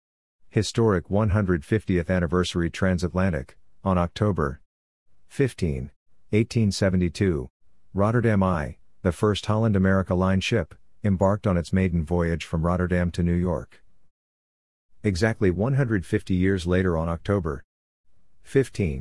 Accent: American